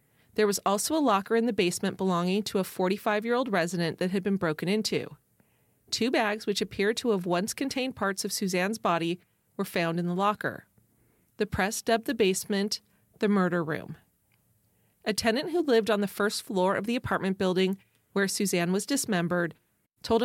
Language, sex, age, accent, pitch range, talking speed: English, female, 30-49, American, 180-225 Hz, 180 wpm